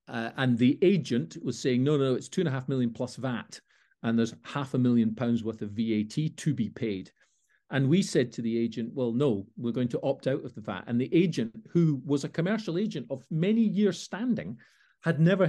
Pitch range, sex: 115-165 Hz, male